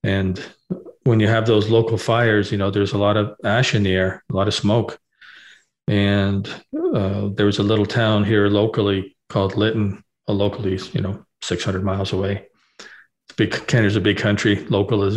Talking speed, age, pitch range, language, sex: 185 wpm, 40-59, 100-115 Hz, English, male